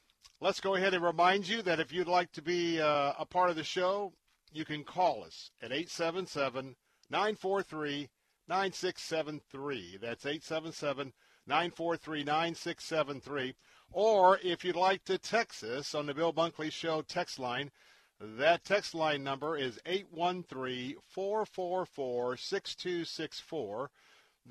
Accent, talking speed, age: American, 115 wpm, 50-69